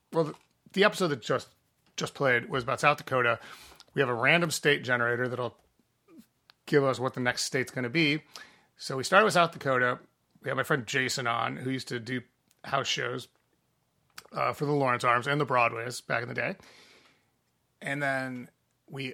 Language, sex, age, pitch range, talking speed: English, male, 30-49, 125-155 Hz, 190 wpm